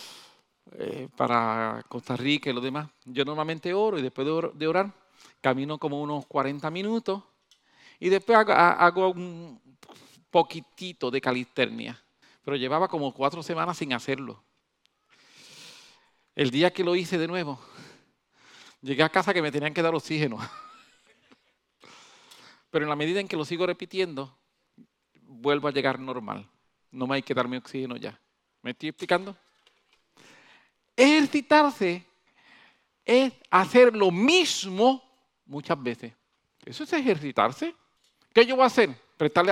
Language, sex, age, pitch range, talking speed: English, male, 40-59, 145-215 Hz, 140 wpm